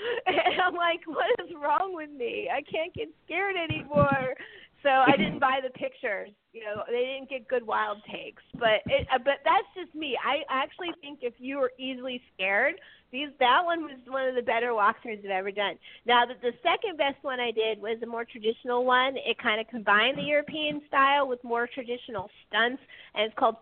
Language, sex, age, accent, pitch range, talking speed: English, female, 40-59, American, 205-275 Hz, 205 wpm